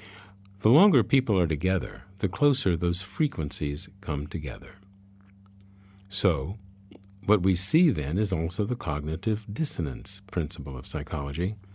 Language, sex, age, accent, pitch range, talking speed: English, male, 50-69, American, 85-105 Hz, 125 wpm